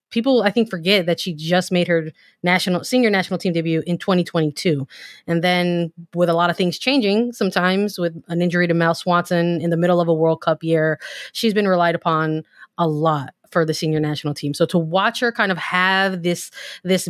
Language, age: English, 20-39